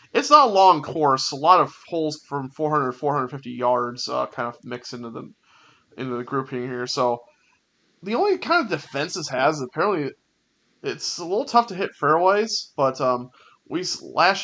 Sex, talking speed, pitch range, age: male, 185 wpm, 130-165 Hz, 30-49